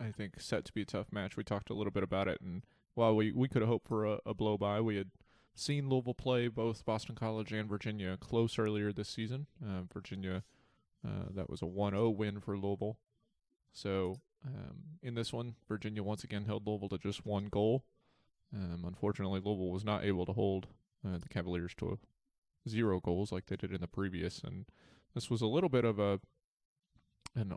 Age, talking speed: 20-39, 200 wpm